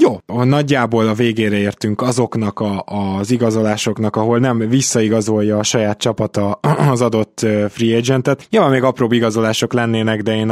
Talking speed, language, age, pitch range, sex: 150 wpm, Hungarian, 20-39, 105-120 Hz, male